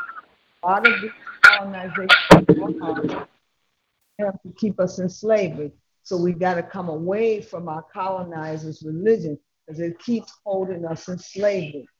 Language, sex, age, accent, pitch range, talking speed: English, female, 50-69, American, 165-200 Hz, 135 wpm